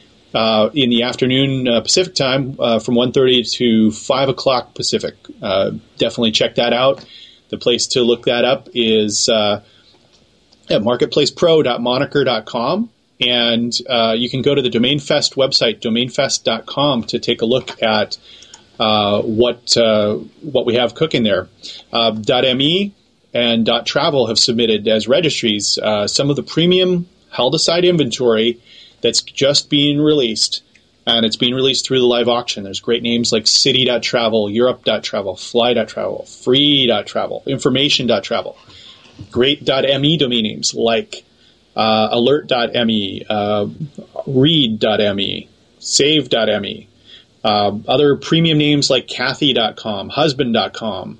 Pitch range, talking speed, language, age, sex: 110-135 Hz, 125 wpm, English, 30-49, male